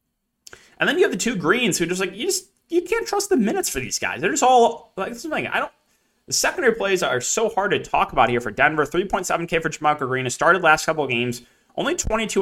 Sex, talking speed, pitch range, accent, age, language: male, 260 wpm, 120-165 Hz, American, 20-39, English